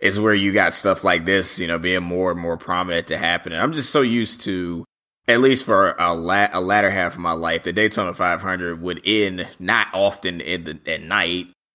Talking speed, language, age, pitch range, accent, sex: 225 wpm, English, 20-39, 85-100 Hz, American, male